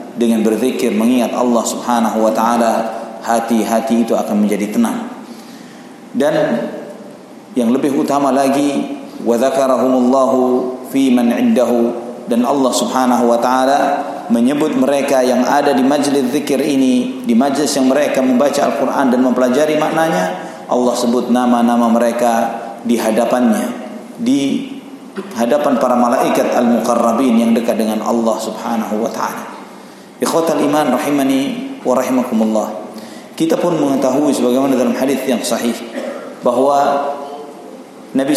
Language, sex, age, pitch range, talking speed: Indonesian, male, 40-59, 120-145 Hz, 110 wpm